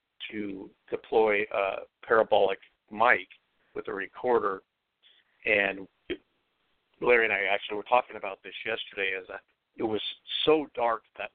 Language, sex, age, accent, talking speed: English, male, 50-69, American, 125 wpm